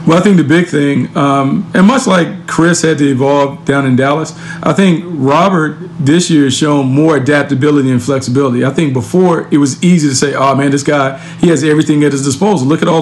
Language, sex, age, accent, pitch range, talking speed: English, male, 40-59, American, 135-160 Hz, 225 wpm